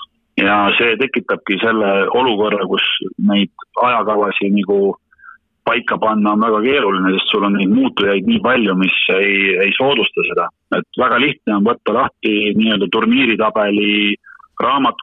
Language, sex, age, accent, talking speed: English, male, 40-59, Finnish, 130 wpm